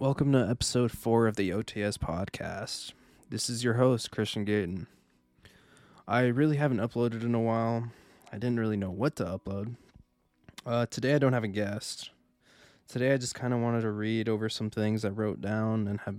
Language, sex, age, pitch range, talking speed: English, male, 20-39, 100-120 Hz, 190 wpm